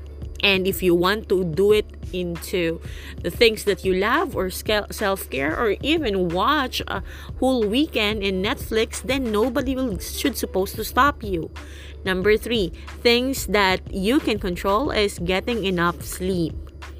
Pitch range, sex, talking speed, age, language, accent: 175-235 Hz, female, 145 wpm, 20-39, English, Filipino